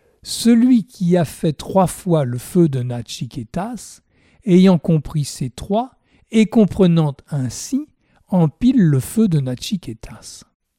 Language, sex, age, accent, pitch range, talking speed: French, male, 60-79, French, 140-195 Hz, 120 wpm